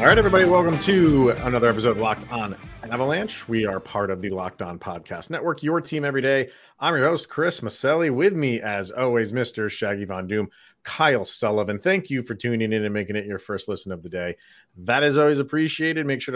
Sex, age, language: male, 30-49, English